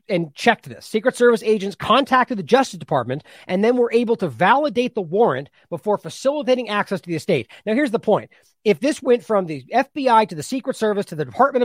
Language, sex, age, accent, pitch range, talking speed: English, male, 40-59, American, 170-235 Hz, 210 wpm